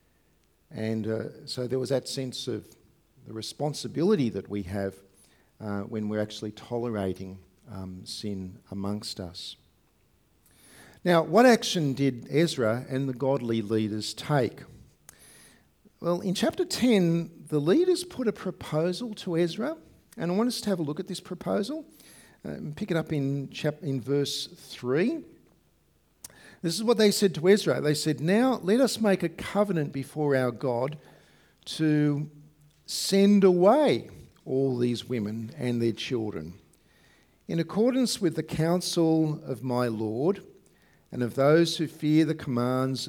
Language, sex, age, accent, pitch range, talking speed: English, male, 50-69, Australian, 115-170 Hz, 145 wpm